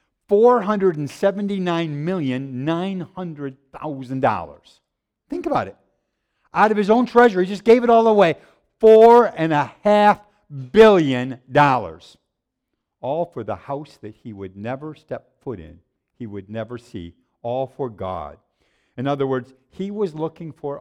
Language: English